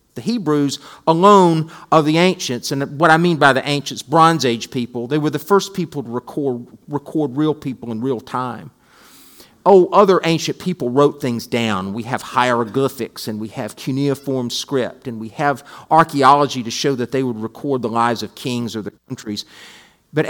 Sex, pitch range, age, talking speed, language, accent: male, 120-160 Hz, 40-59, 185 wpm, English, American